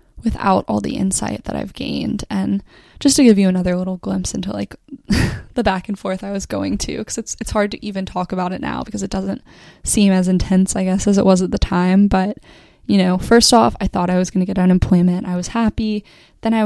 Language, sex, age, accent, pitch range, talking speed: English, female, 10-29, American, 185-225 Hz, 240 wpm